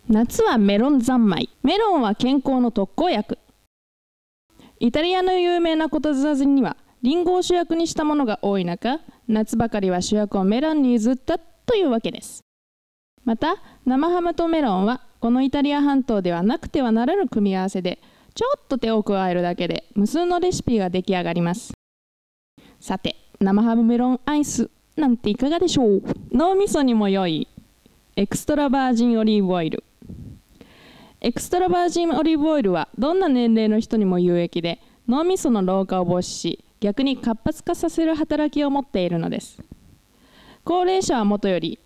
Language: Japanese